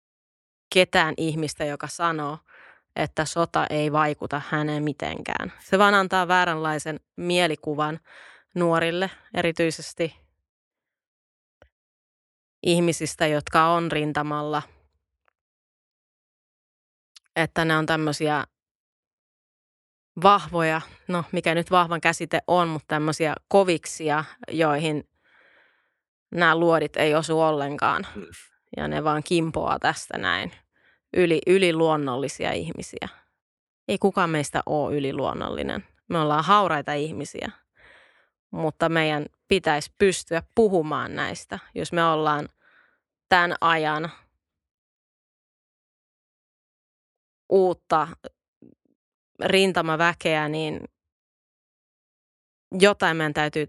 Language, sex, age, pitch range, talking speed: Finnish, female, 20-39, 150-170 Hz, 85 wpm